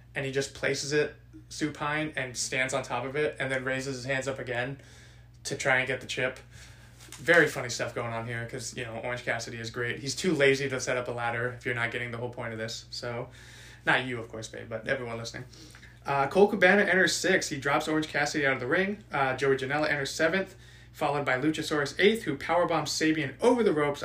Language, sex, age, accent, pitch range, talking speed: English, male, 20-39, American, 125-155 Hz, 230 wpm